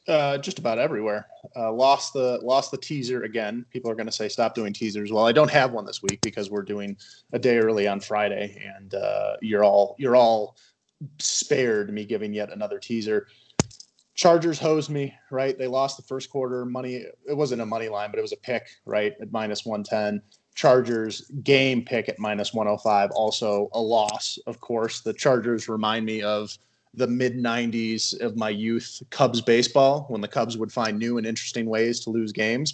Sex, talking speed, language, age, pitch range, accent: male, 195 wpm, English, 30-49, 110-135 Hz, American